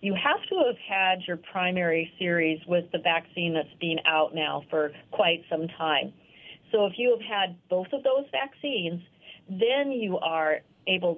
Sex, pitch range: female, 160-195 Hz